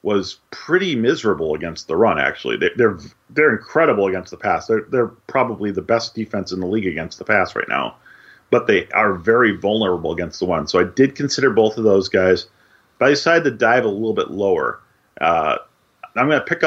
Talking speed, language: 210 wpm, English